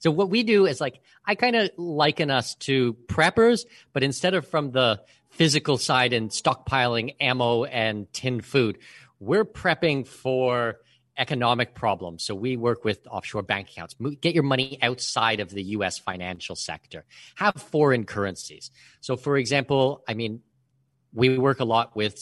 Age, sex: 40-59, male